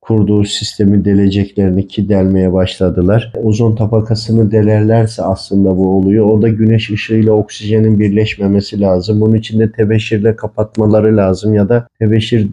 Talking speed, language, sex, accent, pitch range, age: 130 wpm, Turkish, male, native, 105-120 Hz, 50-69